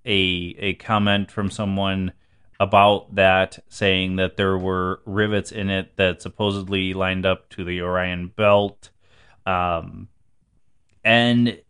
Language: English